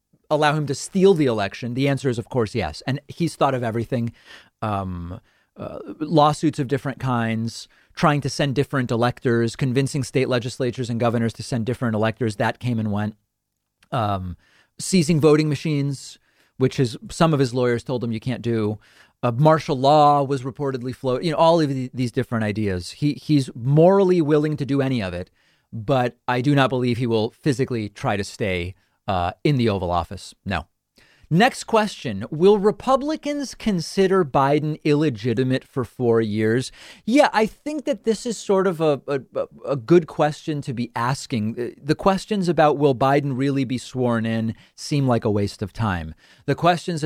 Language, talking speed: English, 175 wpm